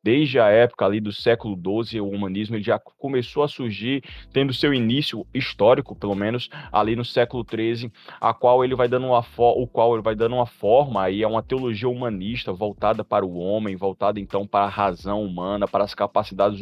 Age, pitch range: 20-39, 95-120 Hz